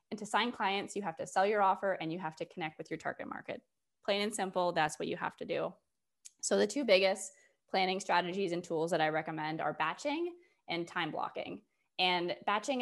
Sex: female